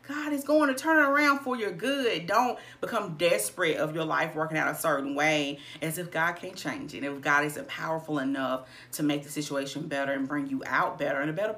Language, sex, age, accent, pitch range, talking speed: English, female, 40-59, American, 140-210 Hz, 235 wpm